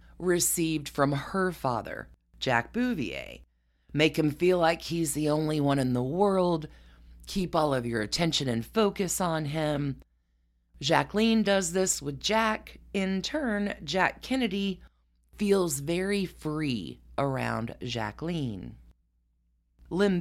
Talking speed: 120 wpm